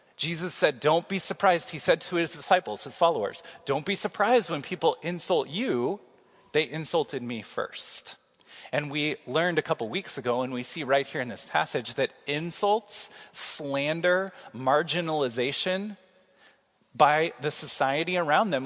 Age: 30-49